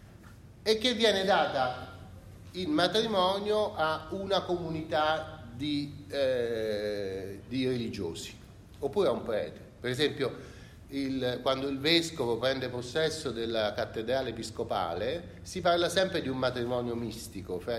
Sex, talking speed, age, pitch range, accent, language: male, 120 wpm, 40-59, 100-150 Hz, native, Italian